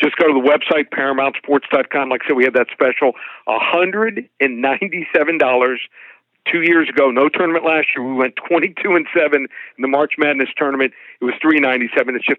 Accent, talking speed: American, 165 wpm